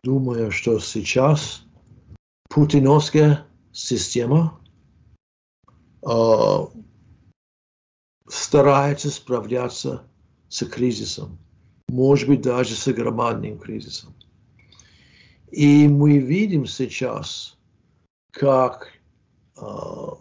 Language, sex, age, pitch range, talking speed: Ukrainian, male, 60-79, 105-145 Hz, 65 wpm